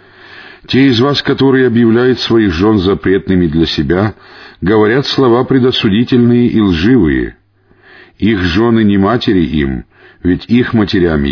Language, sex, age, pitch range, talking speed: Russian, male, 50-69, 95-125 Hz, 120 wpm